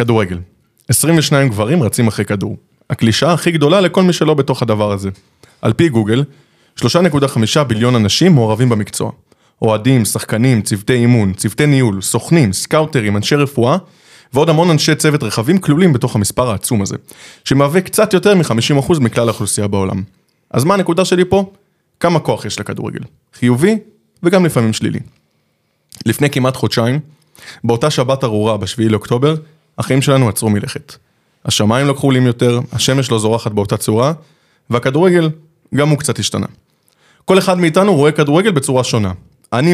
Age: 20-39